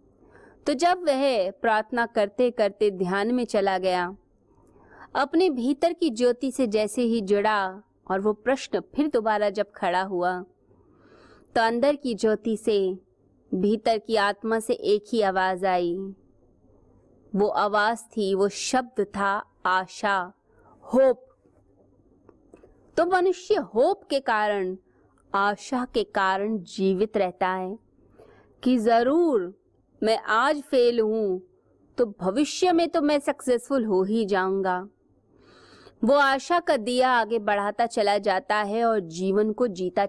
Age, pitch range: 20-39, 195-255 Hz